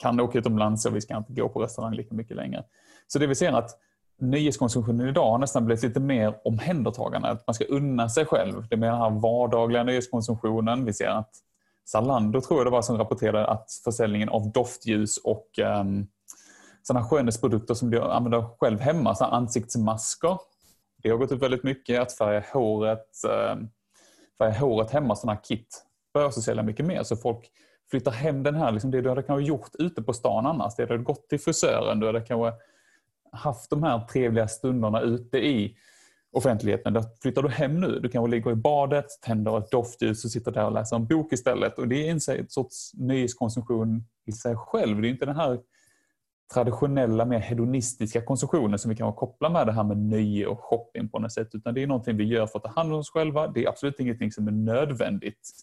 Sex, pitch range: male, 110-130 Hz